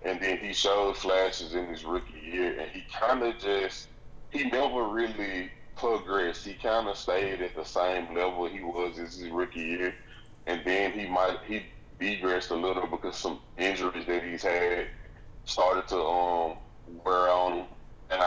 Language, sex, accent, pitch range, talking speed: English, male, American, 85-100 Hz, 175 wpm